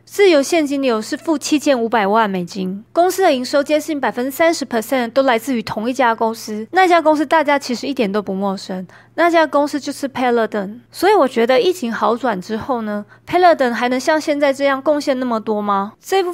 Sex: female